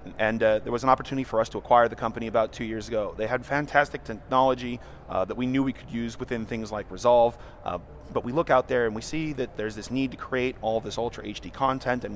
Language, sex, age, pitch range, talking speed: English, male, 30-49, 115-135 Hz, 255 wpm